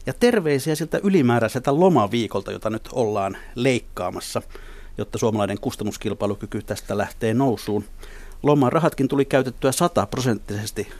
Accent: native